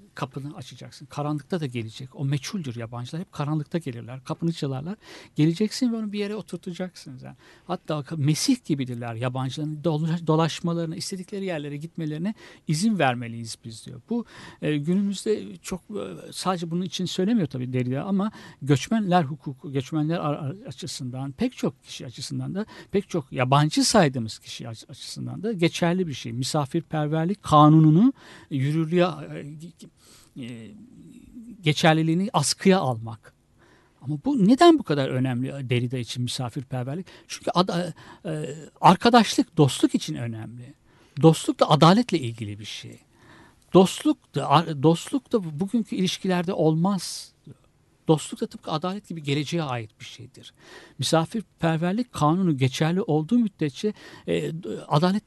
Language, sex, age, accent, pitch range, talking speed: Turkish, male, 60-79, native, 135-190 Hz, 120 wpm